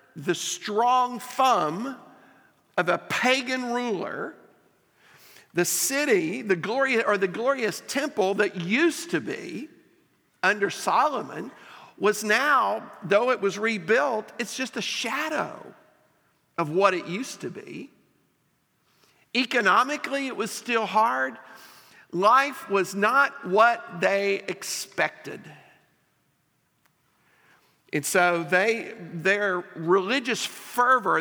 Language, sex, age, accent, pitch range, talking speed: English, male, 50-69, American, 185-245 Hz, 100 wpm